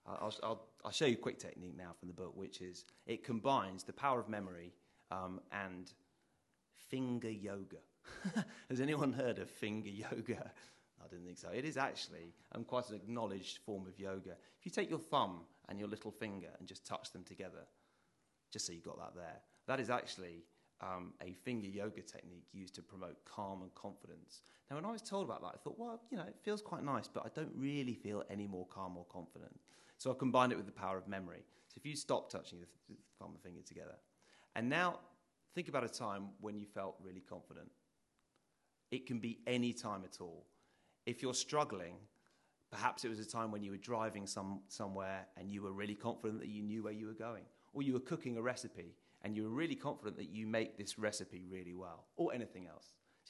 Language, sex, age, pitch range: English, male, 30-49, 95-125 Hz